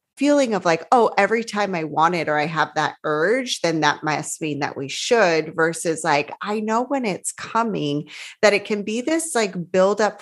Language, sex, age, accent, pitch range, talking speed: English, female, 20-39, American, 170-220 Hz, 210 wpm